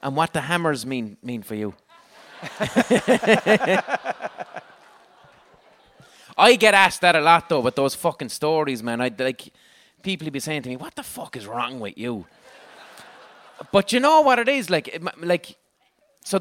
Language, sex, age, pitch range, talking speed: English, male, 30-49, 115-165 Hz, 165 wpm